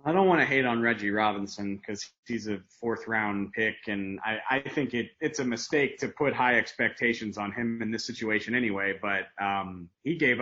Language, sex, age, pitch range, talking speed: English, male, 30-49, 105-125 Hz, 205 wpm